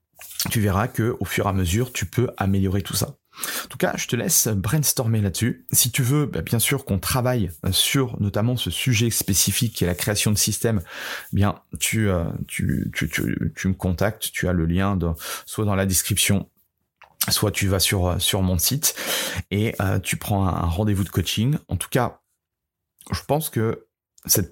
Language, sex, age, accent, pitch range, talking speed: French, male, 30-49, French, 95-115 Hz, 190 wpm